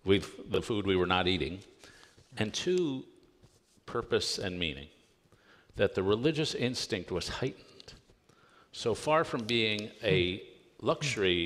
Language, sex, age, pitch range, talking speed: English, male, 50-69, 90-115 Hz, 125 wpm